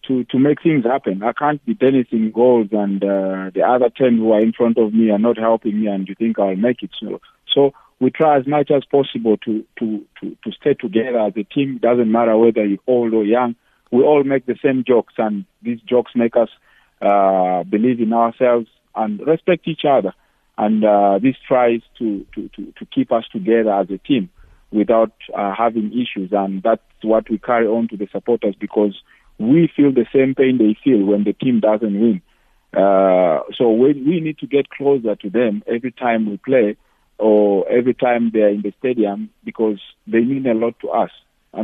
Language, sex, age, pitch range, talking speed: English, male, 50-69, 105-130 Hz, 210 wpm